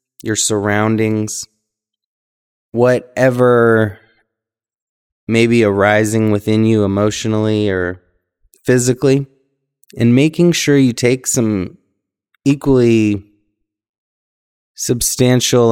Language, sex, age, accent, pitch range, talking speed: English, male, 20-39, American, 95-115 Hz, 75 wpm